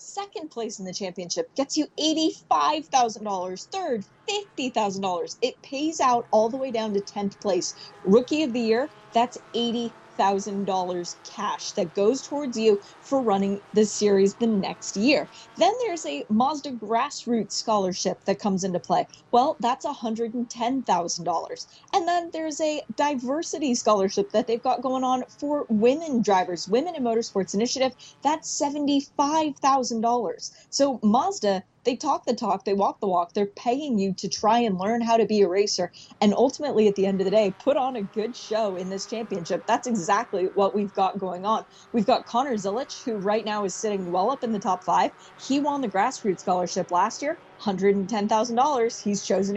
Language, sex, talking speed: English, female, 190 wpm